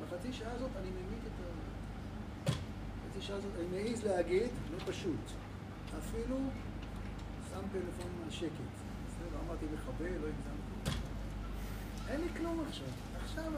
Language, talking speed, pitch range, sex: Hebrew, 95 wpm, 100-115 Hz, male